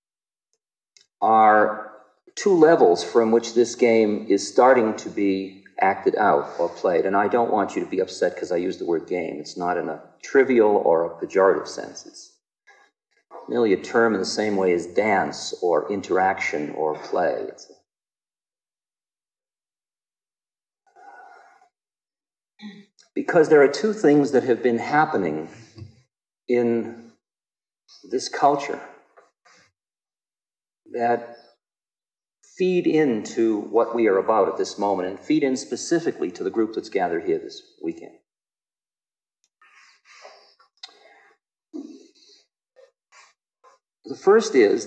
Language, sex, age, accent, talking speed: English, male, 50-69, American, 120 wpm